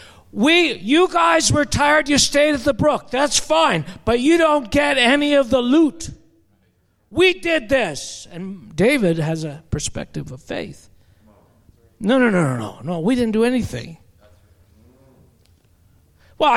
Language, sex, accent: English, male, American